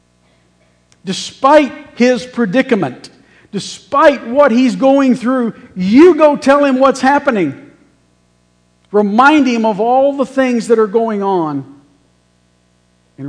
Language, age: English, 50-69